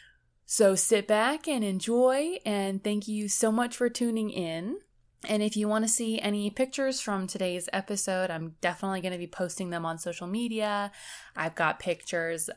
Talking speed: 175 wpm